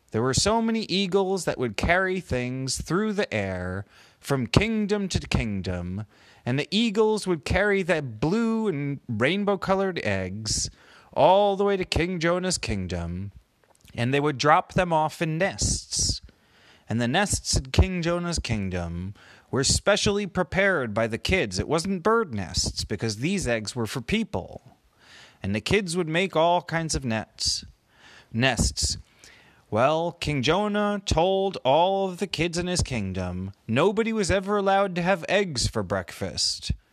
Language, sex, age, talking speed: English, male, 30-49, 155 wpm